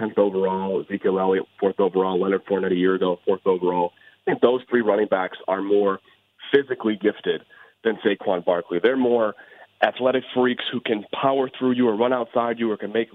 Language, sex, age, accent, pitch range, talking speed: English, male, 30-49, American, 105-120 Hz, 190 wpm